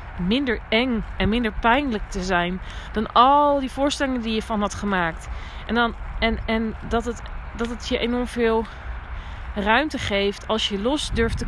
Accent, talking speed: Dutch, 160 wpm